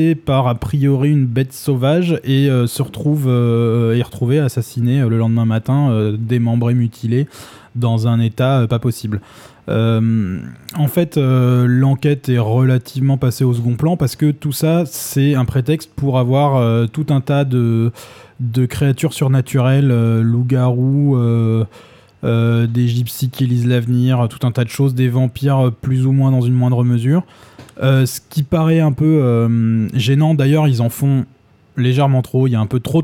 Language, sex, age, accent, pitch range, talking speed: French, male, 20-39, French, 120-140 Hz, 175 wpm